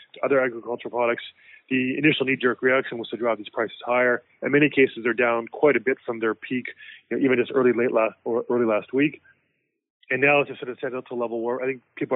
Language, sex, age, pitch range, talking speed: English, male, 20-39, 115-130 Hz, 240 wpm